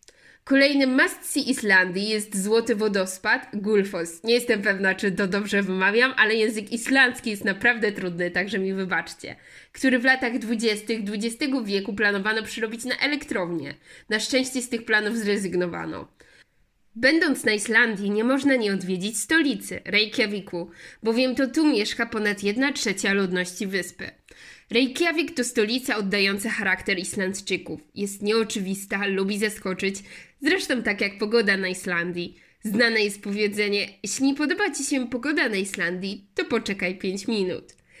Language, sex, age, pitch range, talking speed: Polish, female, 20-39, 195-250 Hz, 140 wpm